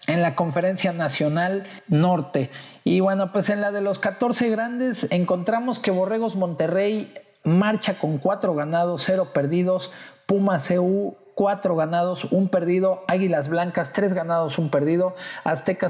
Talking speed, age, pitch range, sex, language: 140 wpm, 50-69, 165-195 Hz, male, Spanish